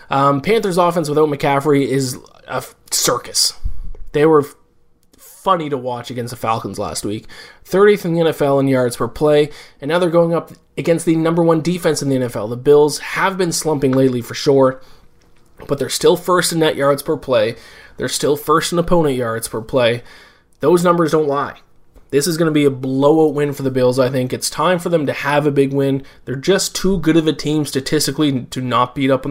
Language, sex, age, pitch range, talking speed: English, male, 20-39, 135-165 Hz, 210 wpm